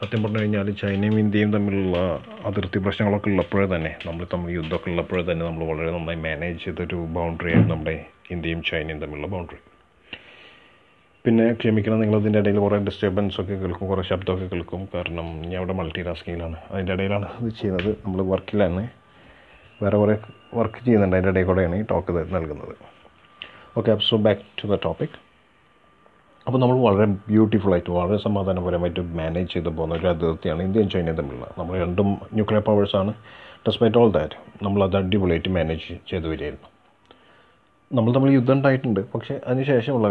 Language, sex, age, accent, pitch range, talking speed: Malayalam, male, 30-49, native, 90-110 Hz, 145 wpm